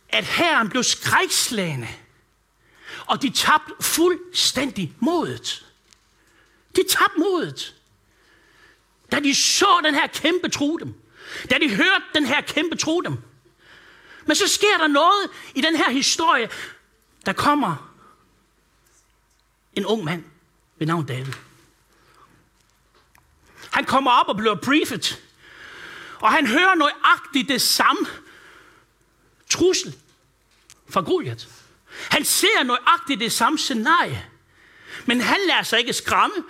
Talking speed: 110 wpm